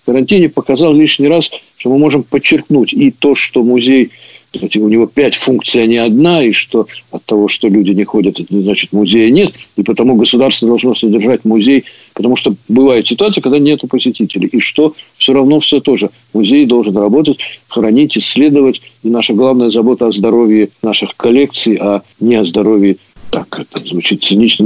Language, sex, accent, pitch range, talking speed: Russian, male, native, 110-140 Hz, 175 wpm